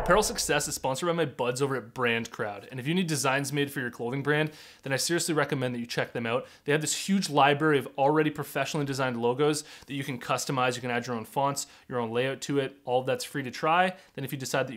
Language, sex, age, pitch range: English, male, 30-49, 135-165 Hz